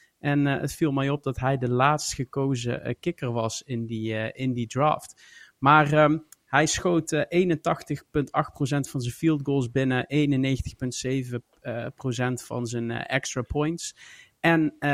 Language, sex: Dutch, male